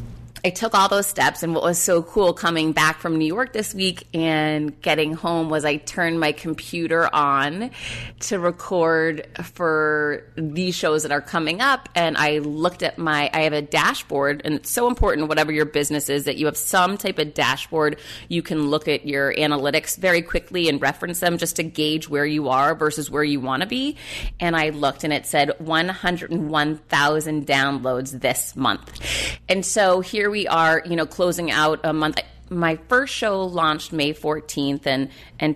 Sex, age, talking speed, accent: female, 30-49, 185 wpm, American